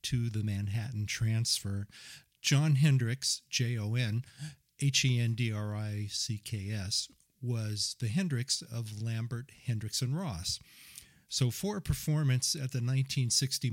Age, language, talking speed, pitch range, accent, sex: 40-59, English, 100 wpm, 110-135 Hz, American, male